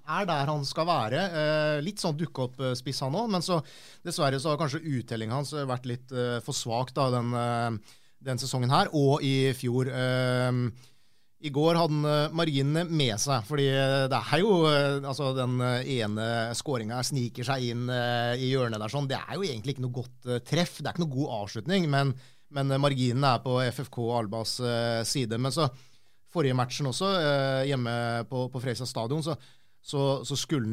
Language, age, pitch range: English, 30-49, 120-145 Hz